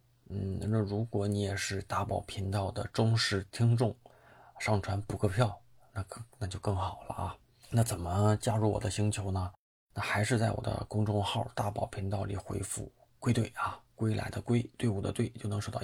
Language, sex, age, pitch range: Chinese, male, 20-39, 100-115 Hz